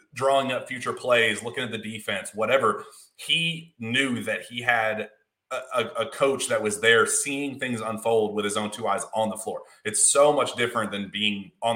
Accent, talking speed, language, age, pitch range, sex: American, 195 wpm, English, 30-49, 105-125 Hz, male